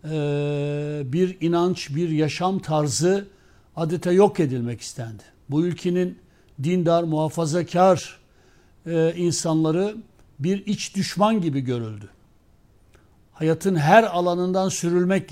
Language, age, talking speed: Turkish, 60-79, 100 wpm